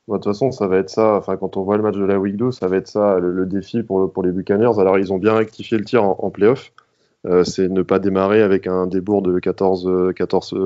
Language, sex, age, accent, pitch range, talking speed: French, male, 20-39, French, 95-110 Hz, 275 wpm